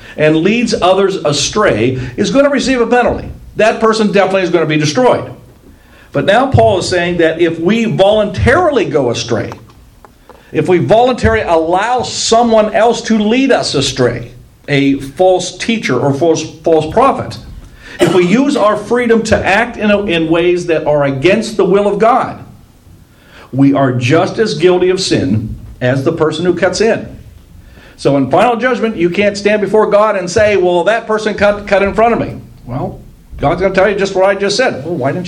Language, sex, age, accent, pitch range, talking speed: English, male, 50-69, American, 145-210 Hz, 185 wpm